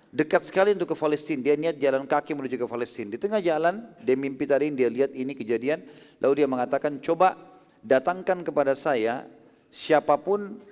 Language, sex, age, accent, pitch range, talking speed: Indonesian, male, 40-59, native, 130-170 Hz, 170 wpm